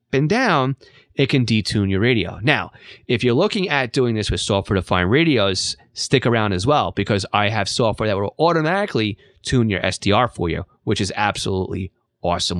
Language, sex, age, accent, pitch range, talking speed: English, male, 30-49, American, 100-155 Hz, 170 wpm